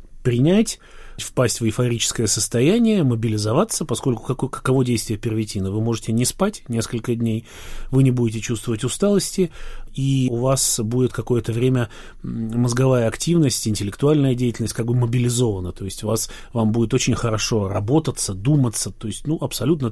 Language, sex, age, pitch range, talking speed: Russian, male, 30-49, 110-135 Hz, 150 wpm